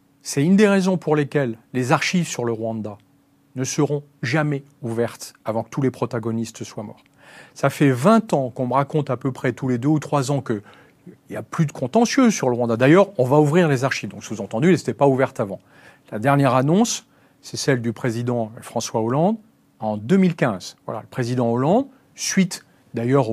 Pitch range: 115-155 Hz